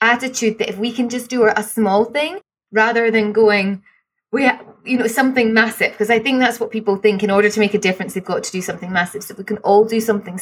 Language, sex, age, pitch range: English, female, 20-39, 200-245 Hz